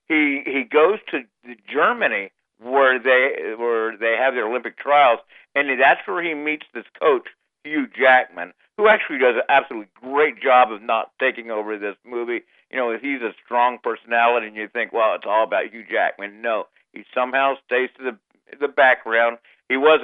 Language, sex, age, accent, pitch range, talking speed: English, male, 50-69, American, 115-155 Hz, 180 wpm